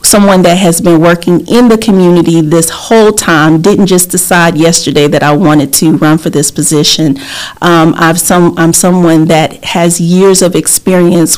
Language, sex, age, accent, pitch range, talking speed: English, female, 40-59, American, 170-220 Hz, 175 wpm